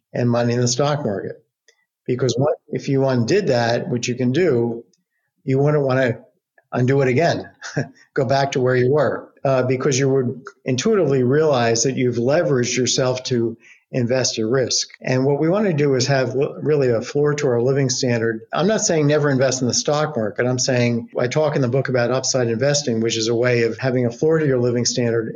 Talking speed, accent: 210 wpm, American